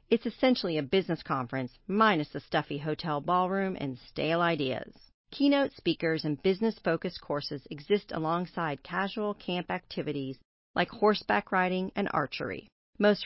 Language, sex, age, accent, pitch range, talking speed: English, female, 40-59, American, 150-205 Hz, 130 wpm